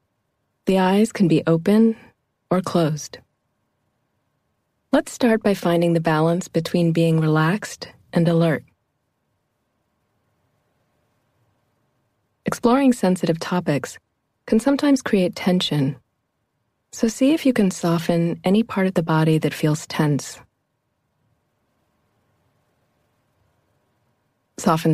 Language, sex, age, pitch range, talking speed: English, female, 30-49, 120-180 Hz, 95 wpm